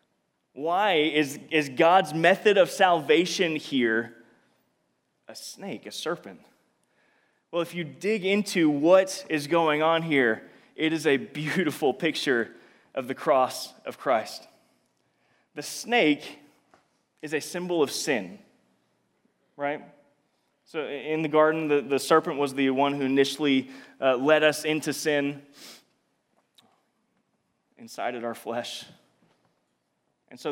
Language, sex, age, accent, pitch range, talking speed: English, male, 20-39, American, 140-180 Hz, 120 wpm